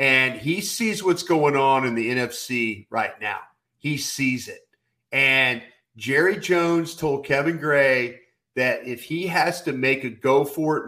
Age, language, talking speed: 40-59, English, 155 wpm